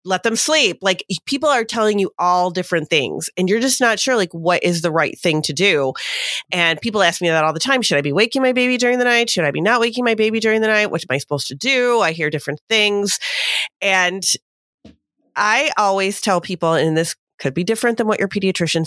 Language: English